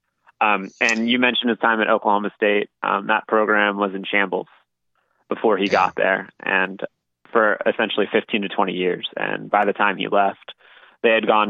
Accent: American